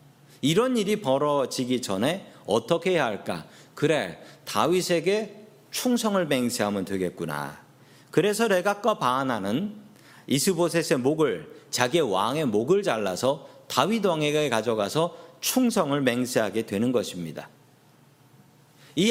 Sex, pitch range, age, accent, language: male, 135-190 Hz, 40-59, native, Korean